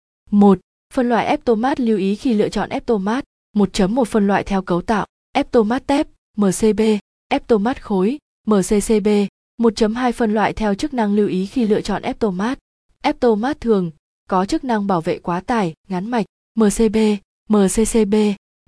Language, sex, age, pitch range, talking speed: Vietnamese, female, 20-39, 195-240 Hz, 150 wpm